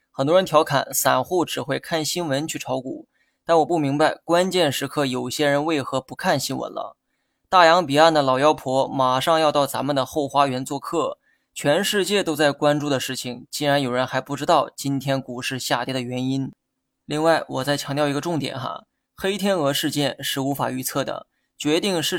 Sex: male